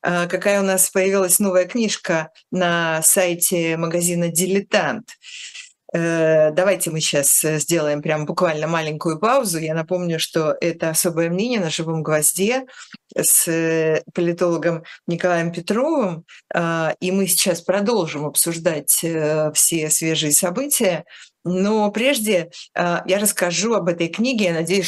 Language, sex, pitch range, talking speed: Russian, female, 160-190 Hz, 115 wpm